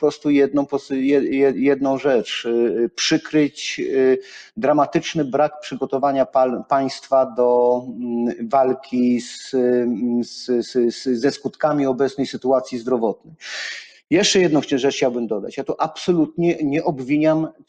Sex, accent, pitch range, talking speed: male, native, 130-155 Hz, 90 wpm